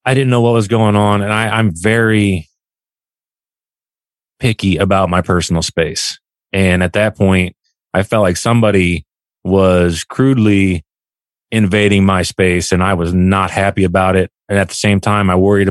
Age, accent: 30-49, American